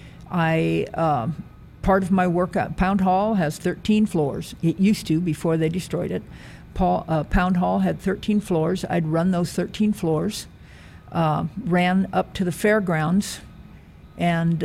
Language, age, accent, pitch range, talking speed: English, 50-69, American, 165-185 Hz, 150 wpm